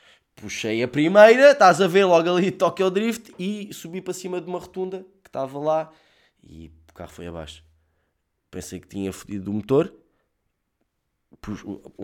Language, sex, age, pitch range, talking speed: Portuguese, male, 20-39, 90-125 Hz, 165 wpm